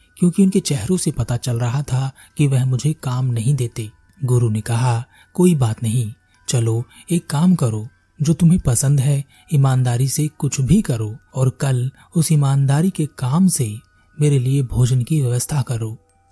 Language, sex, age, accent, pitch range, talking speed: Hindi, male, 30-49, native, 115-150 Hz, 170 wpm